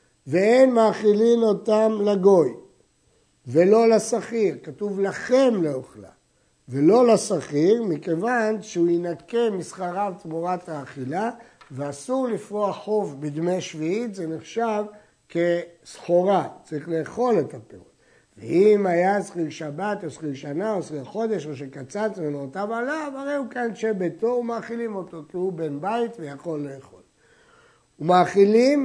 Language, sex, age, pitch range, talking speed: Hebrew, male, 60-79, 160-220 Hz, 120 wpm